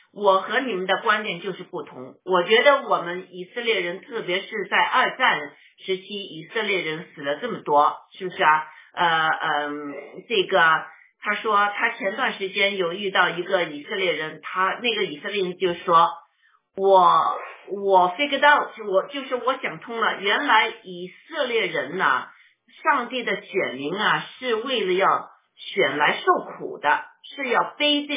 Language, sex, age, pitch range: Chinese, female, 50-69, 180-220 Hz